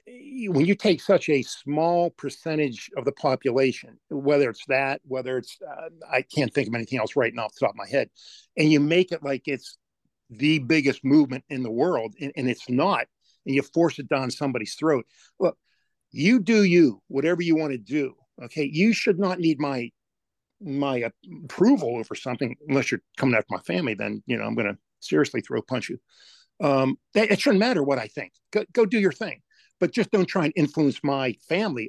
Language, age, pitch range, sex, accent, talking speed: English, 50-69, 130-170 Hz, male, American, 205 wpm